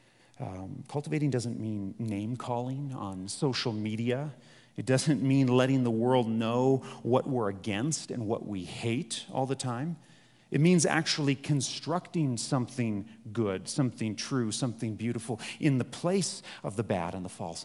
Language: English